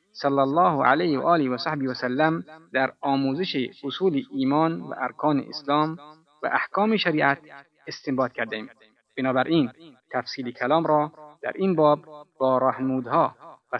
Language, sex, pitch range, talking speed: Persian, male, 130-155 Hz, 135 wpm